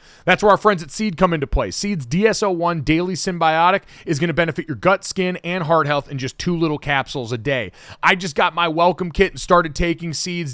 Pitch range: 145-185 Hz